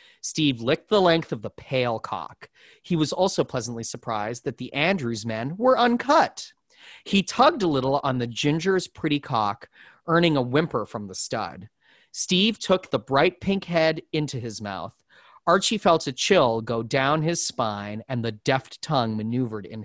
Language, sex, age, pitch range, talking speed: English, male, 30-49, 115-165 Hz, 170 wpm